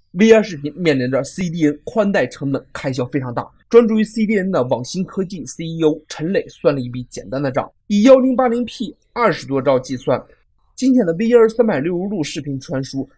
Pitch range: 125-190 Hz